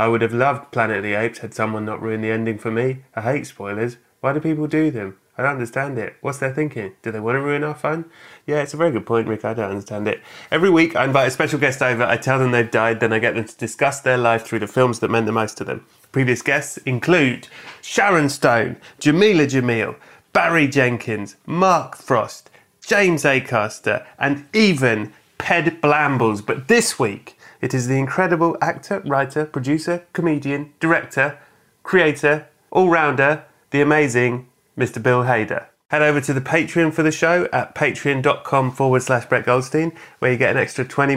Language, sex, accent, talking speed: English, male, British, 195 wpm